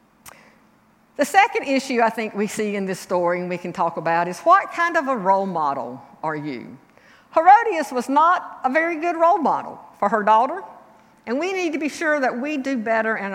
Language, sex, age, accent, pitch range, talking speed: English, female, 50-69, American, 200-290 Hz, 205 wpm